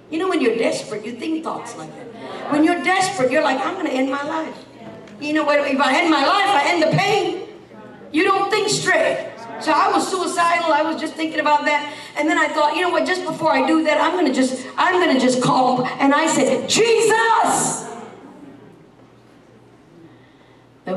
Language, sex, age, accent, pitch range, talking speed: English, female, 50-69, American, 215-325 Hz, 210 wpm